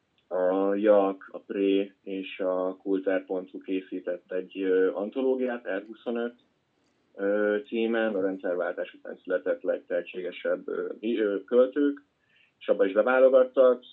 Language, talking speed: Hungarian, 95 wpm